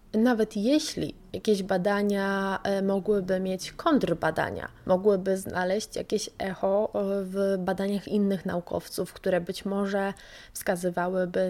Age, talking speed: 20-39, 100 wpm